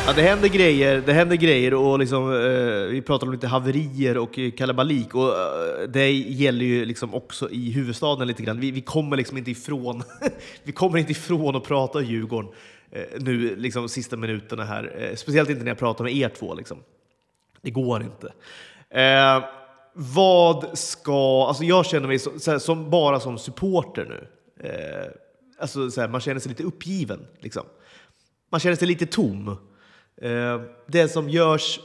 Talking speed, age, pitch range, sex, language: 175 wpm, 30-49, 125-155 Hz, male, Swedish